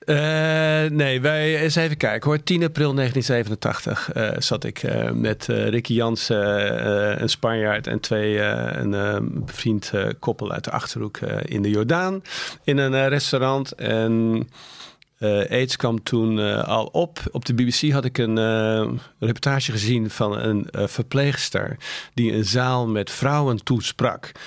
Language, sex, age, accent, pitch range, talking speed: Dutch, male, 50-69, Dutch, 110-130 Hz, 165 wpm